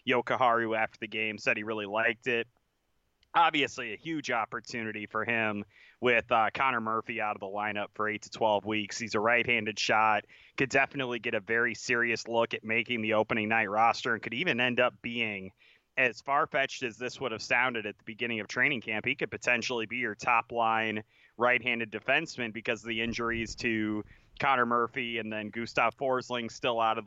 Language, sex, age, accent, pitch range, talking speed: English, male, 30-49, American, 110-125 Hz, 195 wpm